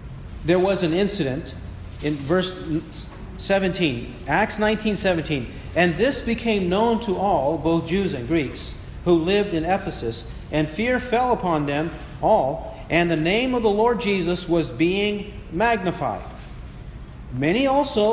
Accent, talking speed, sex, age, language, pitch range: American, 135 wpm, male, 40-59, English, 160-220 Hz